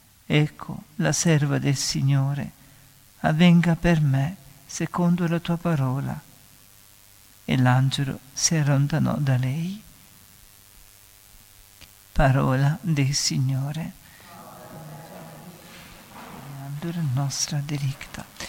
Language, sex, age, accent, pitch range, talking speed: Italian, male, 50-69, native, 135-170 Hz, 80 wpm